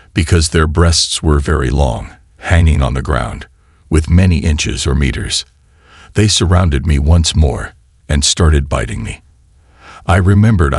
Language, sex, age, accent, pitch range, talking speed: English, male, 60-79, American, 75-90 Hz, 145 wpm